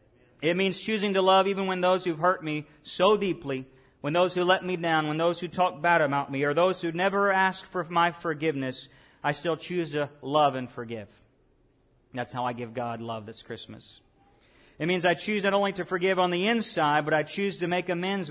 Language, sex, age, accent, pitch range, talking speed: English, male, 40-59, American, 125-165 Hz, 215 wpm